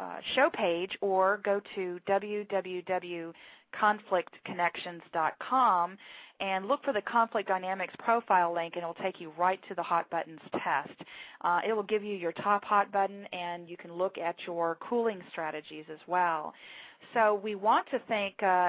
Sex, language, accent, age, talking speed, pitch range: female, English, American, 40-59, 165 wpm, 180-215 Hz